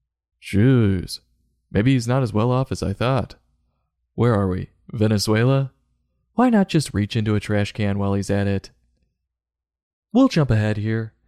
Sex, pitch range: male, 95-120 Hz